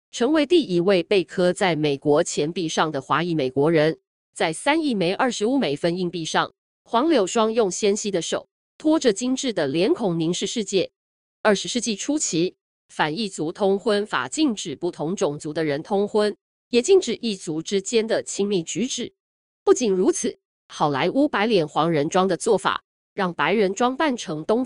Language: Chinese